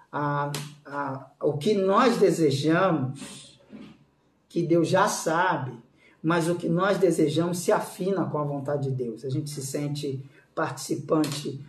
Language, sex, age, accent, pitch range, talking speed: English, male, 50-69, Brazilian, 150-230 Hz, 130 wpm